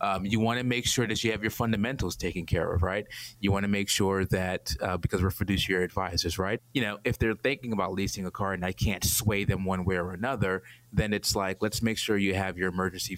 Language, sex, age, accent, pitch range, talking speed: English, male, 20-39, American, 95-110 Hz, 250 wpm